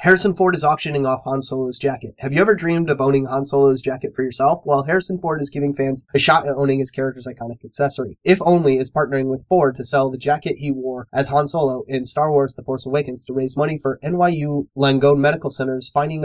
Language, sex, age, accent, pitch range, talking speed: English, male, 30-49, American, 130-150 Hz, 235 wpm